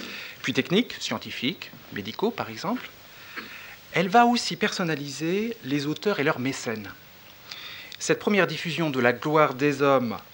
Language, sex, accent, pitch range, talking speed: Spanish, male, French, 135-180 Hz, 135 wpm